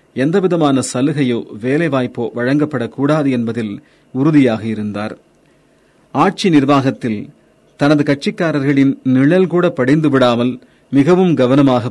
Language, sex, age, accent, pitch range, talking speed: Tamil, male, 40-59, native, 120-150 Hz, 75 wpm